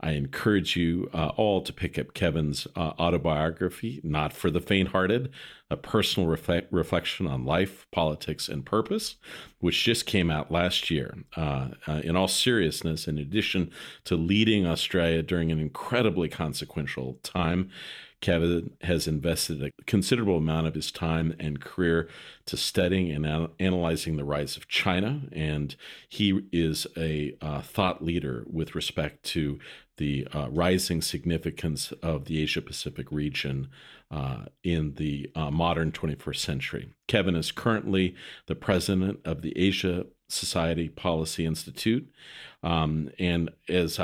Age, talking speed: 40-59, 140 wpm